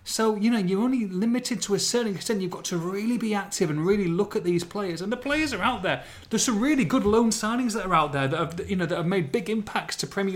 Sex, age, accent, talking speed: male, 30-49, British, 285 wpm